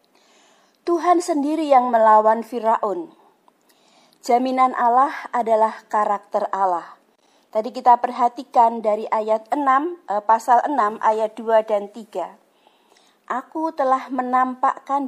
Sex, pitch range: female, 220-285 Hz